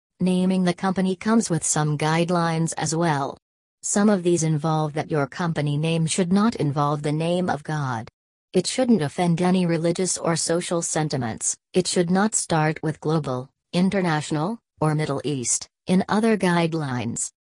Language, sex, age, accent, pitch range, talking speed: English, female, 40-59, American, 145-175 Hz, 155 wpm